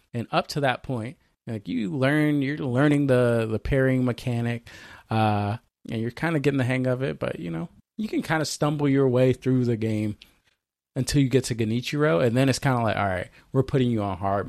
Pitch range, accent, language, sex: 110-140 Hz, American, English, male